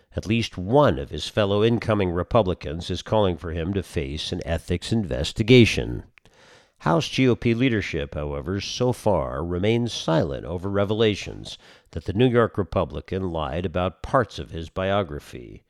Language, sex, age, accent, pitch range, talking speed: English, male, 50-69, American, 85-120 Hz, 145 wpm